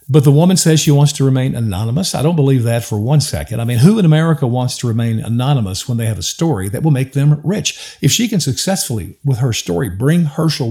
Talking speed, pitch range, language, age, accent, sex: 245 wpm, 120-160 Hz, English, 50-69, American, male